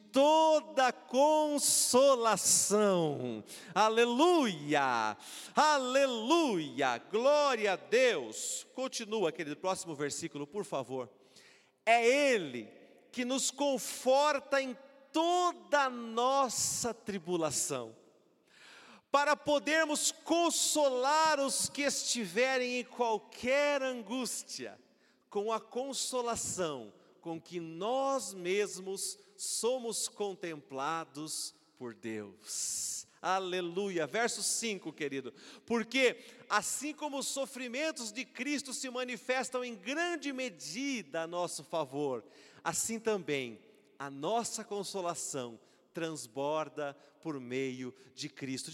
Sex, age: male, 50-69